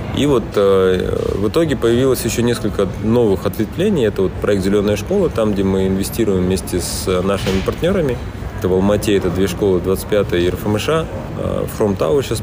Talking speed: 165 wpm